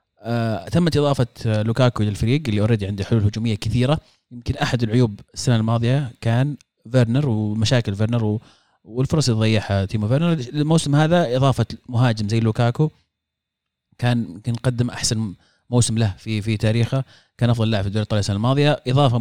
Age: 30-49